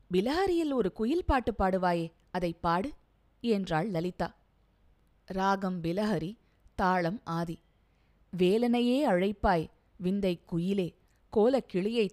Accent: native